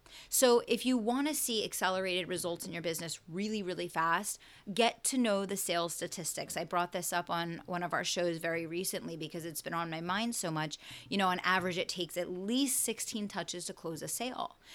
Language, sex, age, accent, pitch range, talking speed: English, female, 30-49, American, 170-205 Hz, 215 wpm